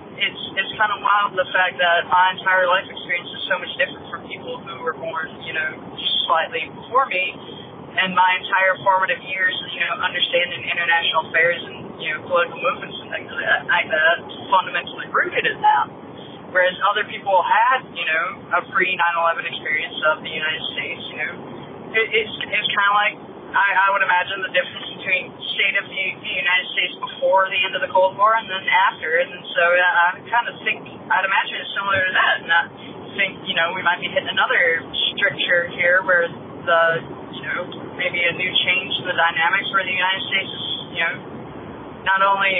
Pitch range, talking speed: 175-210 Hz, 195 wpm